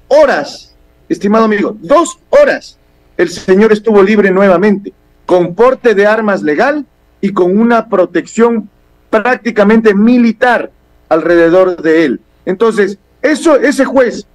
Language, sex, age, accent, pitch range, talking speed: Spanish, male, 50-69, Mexican, 175-230 Hz, 115 wpm